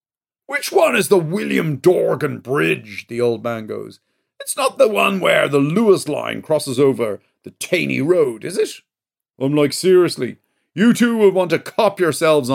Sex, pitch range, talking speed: male, 125-165 Hz, 170 wpm